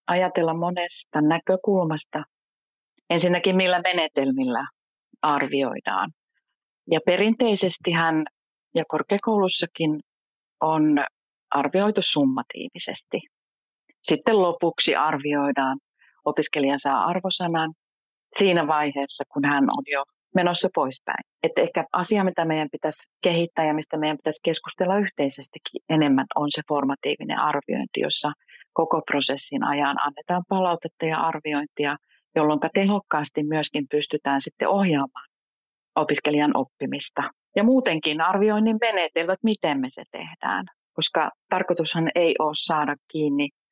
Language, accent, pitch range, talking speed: Finnish, native, 145-180 Hz, 105 wpm